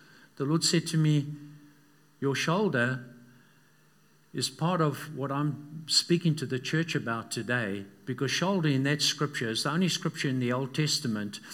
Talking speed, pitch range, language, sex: 160 wpm, 135-160 Hz, English, male